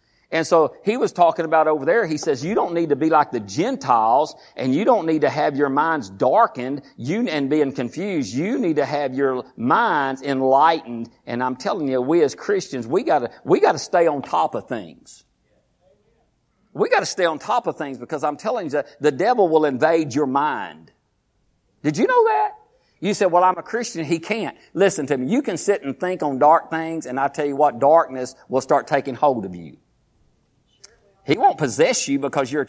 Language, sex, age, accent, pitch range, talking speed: English, male, 50-69, American, 140-170 Hz, 210 wpm